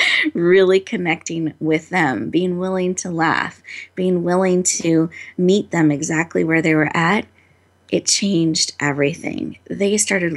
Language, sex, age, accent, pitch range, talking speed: English, female, 30-49, American, 155-180 Hz, 135 wpm